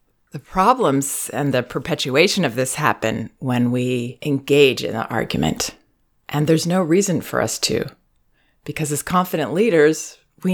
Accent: American